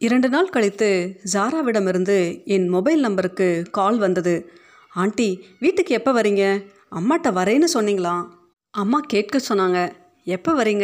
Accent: native